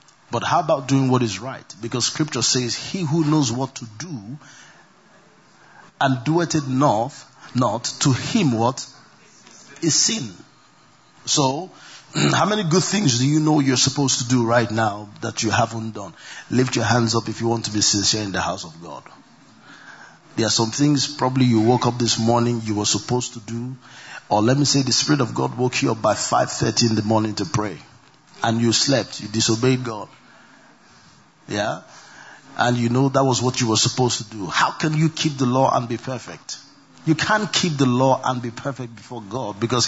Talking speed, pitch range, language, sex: 195 wpm, 115-135 Hz, English, male